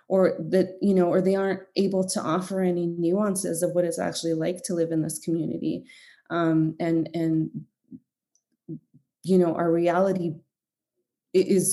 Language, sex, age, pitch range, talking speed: English, female, 20-39, 165-185 Hz, 155 wpm